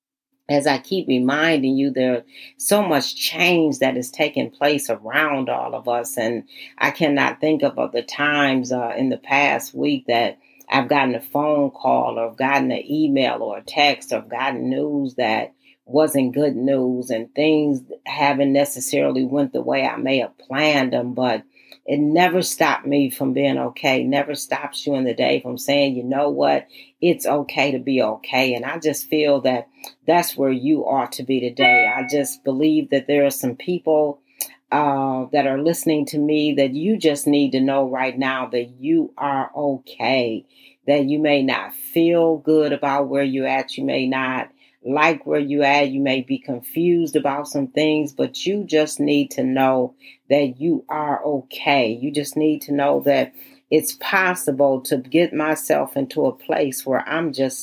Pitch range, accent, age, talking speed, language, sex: 135-155 Hz, American, 40-59, 180 wpm, English, female